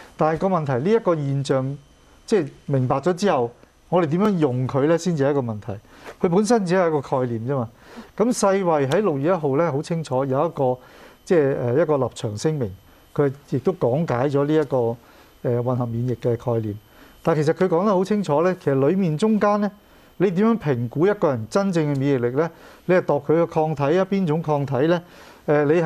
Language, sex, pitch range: English, male, 135-175 Hz